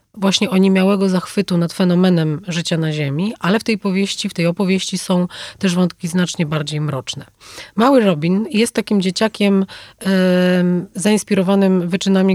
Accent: native